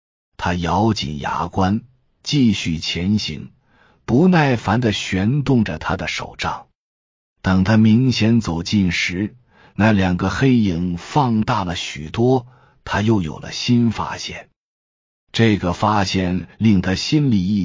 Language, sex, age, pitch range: Chinese, male, 50-69, 90-120 Hz